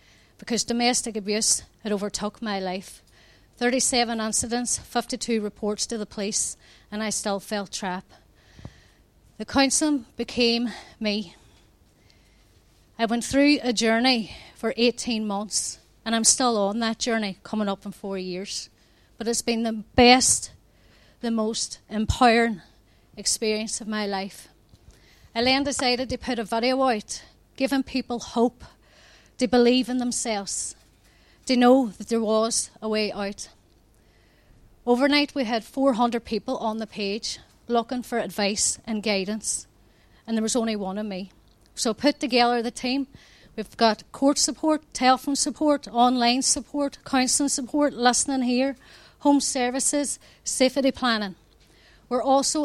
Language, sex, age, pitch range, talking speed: English, female, 30-49, 215-255 Hz, 135 wpm